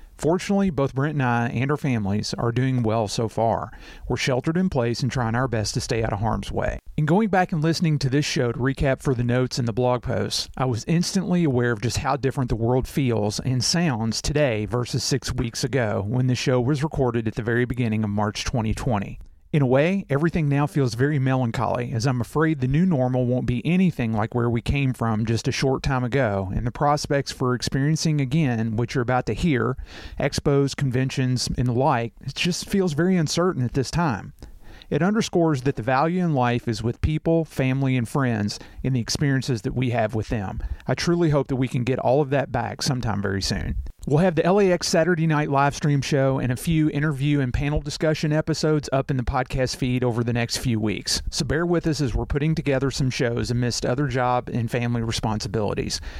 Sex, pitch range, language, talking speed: male, 120-150 Hz, English, 215 wpm